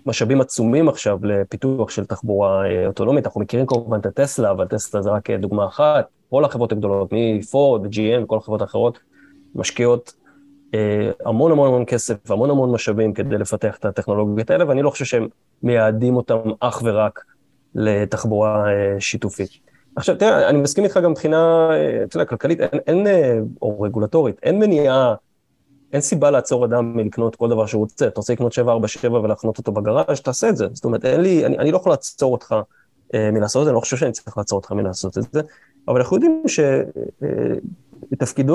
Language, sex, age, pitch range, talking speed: Hebrew, male, 20-39, 110-135 Hz, 175 wpm